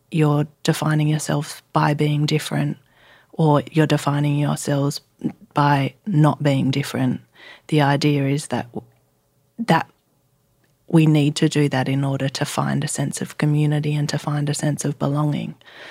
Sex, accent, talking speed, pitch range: female, Australian, 145 wpm, 140-155 Hz